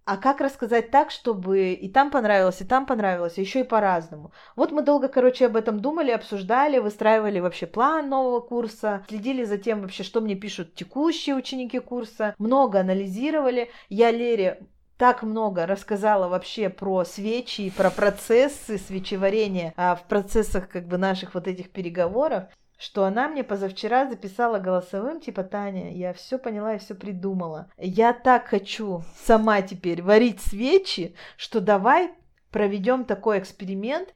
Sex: female